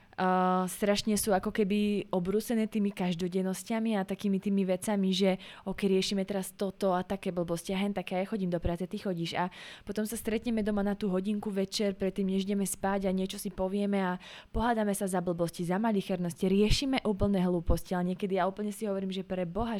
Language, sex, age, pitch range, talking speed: Slovak, female, 20-39, 180-205 Hz, 200 wpm